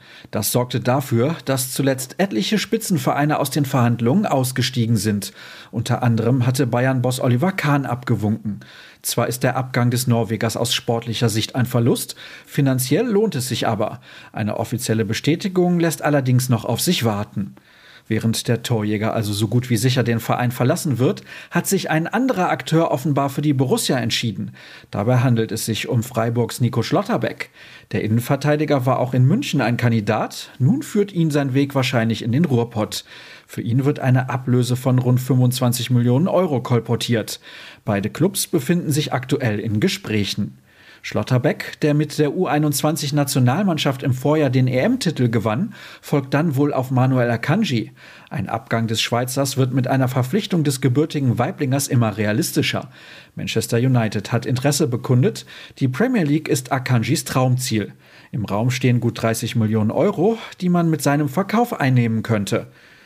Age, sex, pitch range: 40-59, male, 115-150 Hz